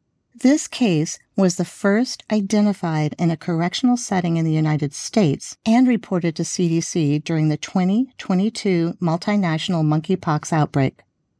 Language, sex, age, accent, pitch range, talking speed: English, female, 50-69, American, 160-220 Hz, 125 wpm